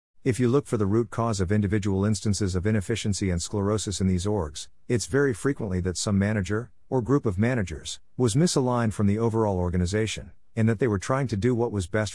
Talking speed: 210 wpm